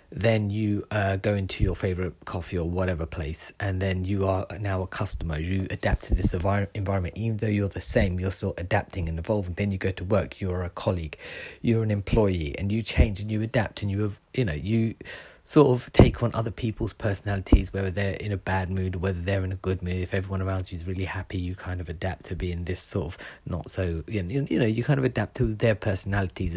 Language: English